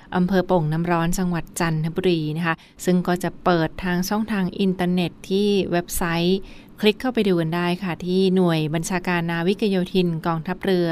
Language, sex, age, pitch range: Thai, female, 20-39, 170-195 Hz